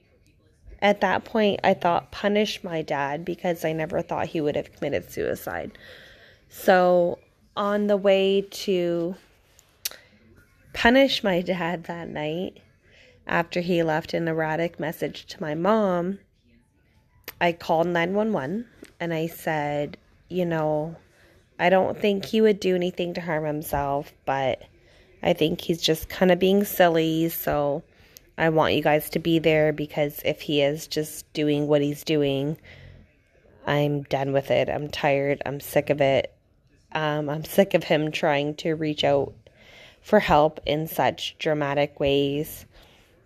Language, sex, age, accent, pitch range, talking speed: English, female, 20-39, American, 150-180 Hz, 145 wpm